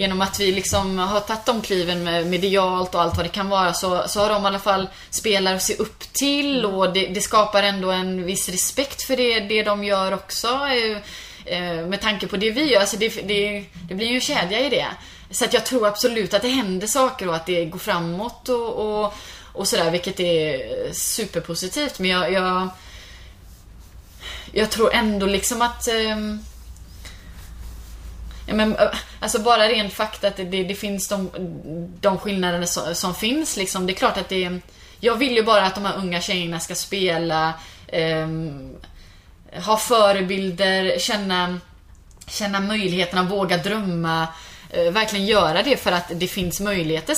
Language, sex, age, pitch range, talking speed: Swedish, female, 20-39, 175-215 Hz, 180 wpm